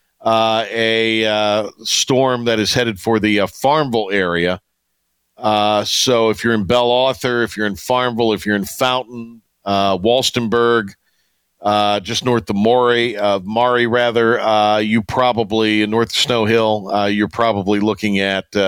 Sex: male